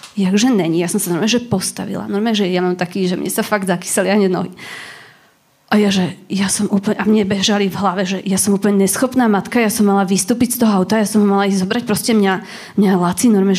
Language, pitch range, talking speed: Slovak, 190-230 Hz, 230 wpm